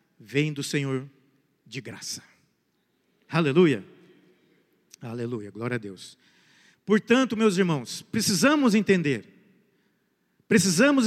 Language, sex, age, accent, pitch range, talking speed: Portuguese, male, 50-69, Brazilian, 175-245 Hz, 85 wpm